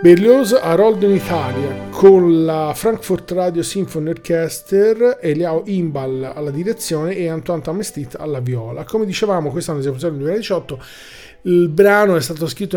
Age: 40-59